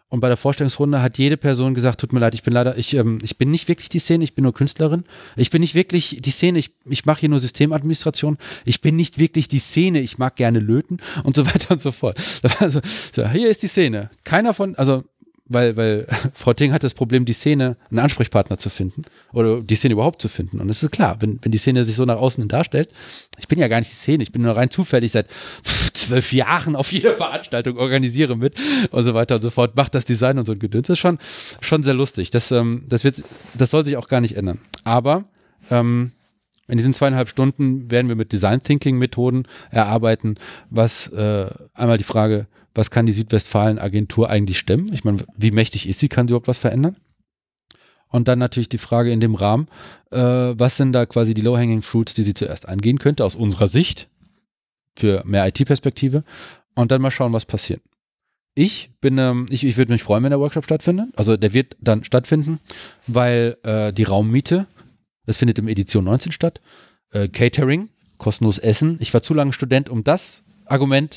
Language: German